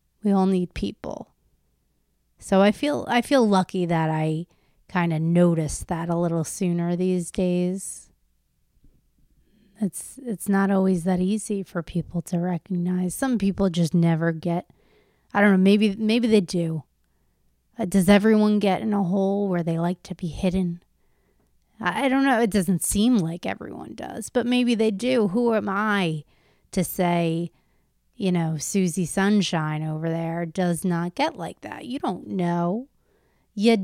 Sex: female